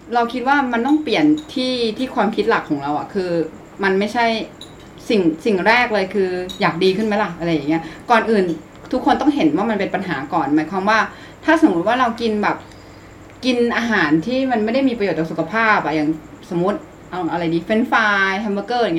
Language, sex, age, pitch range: Thai, female, 20-39, 185-240 Hz